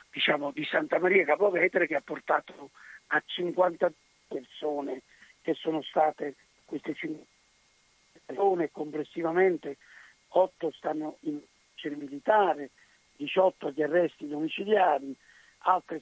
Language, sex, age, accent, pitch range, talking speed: Italian, male, 50-69, native, 155-200 Hz, 105 wpm